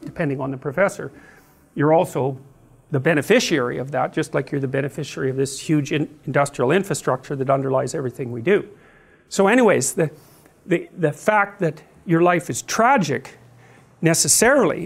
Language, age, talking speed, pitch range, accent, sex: English, 50-69, 155 wpm, 145-185 Hz, American, male